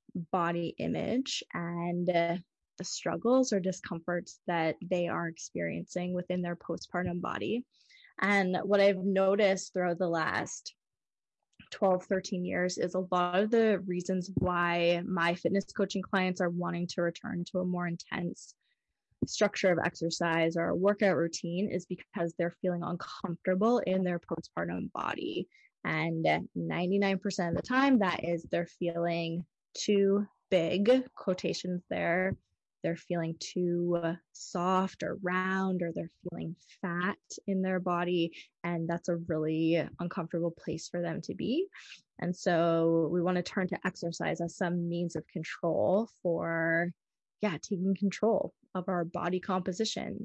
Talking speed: 140 wpm